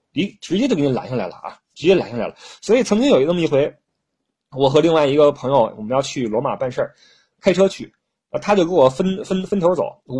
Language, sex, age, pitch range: Chinese, male, 20-39, 125-185 Hz